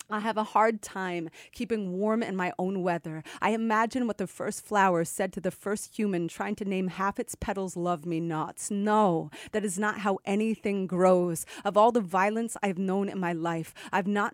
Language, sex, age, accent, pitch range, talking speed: English, female, 30-49, American, 175-215 Hz, 210 wpm